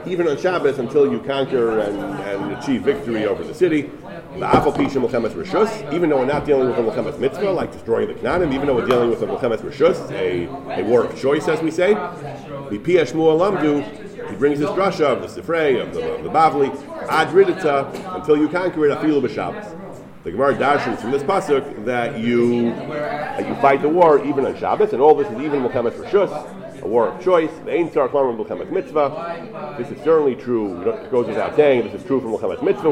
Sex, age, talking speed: male, 40-59, 200 wpm